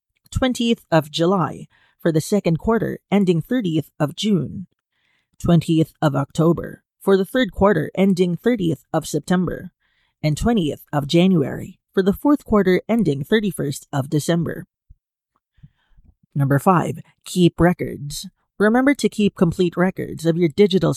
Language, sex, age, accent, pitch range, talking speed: English, female, 30-49, American, 160-205 Hz, 130 wpm